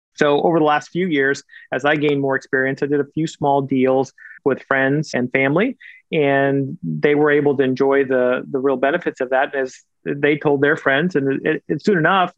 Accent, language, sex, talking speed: American, English, male, 215 wpm